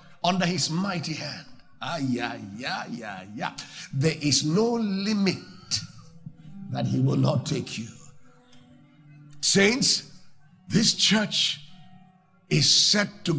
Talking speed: 110 wpm